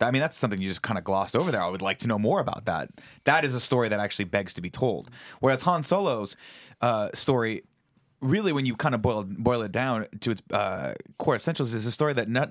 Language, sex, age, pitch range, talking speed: English, male, 30-49, 105-135 Hz, 255 wpm